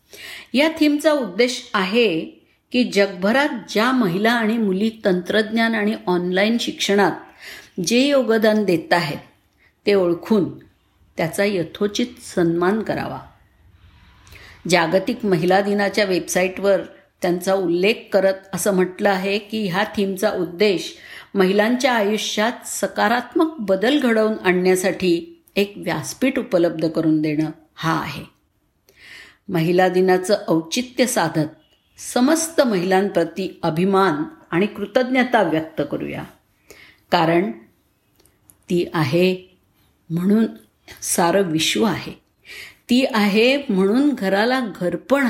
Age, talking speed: 50-69, 100 wpm